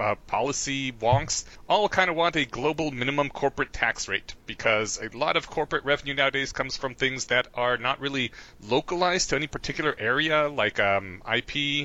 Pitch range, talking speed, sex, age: 135-185 Hz, 175 wpm, male, 30-49